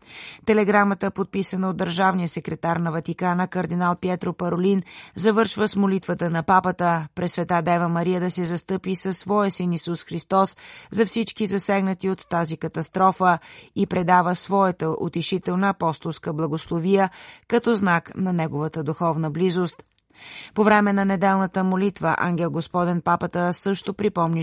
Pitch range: 170-190 Hz